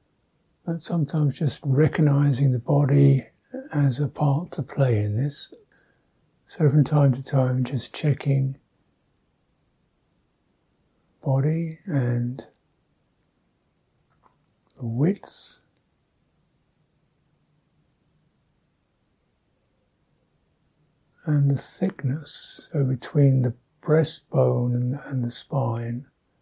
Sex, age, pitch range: male, 60-79, 125-150 Hz